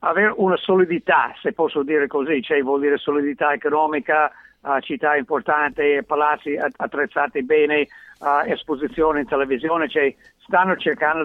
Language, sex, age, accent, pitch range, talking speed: Italian, male, 60-79, native, 140-170 Hz, 135 wpm